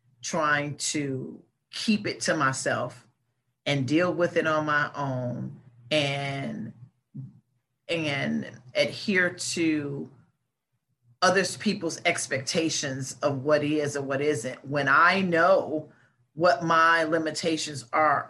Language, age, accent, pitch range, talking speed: English, 40-59, American, 135-210 Hz, 110 wpm